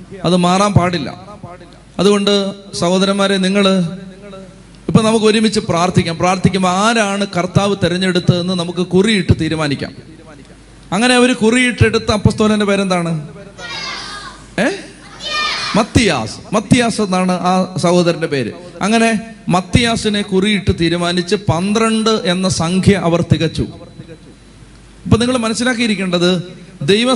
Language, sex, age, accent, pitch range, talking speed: Malayalam, male, 30-49, native, 180-220 Hz, 95 wpm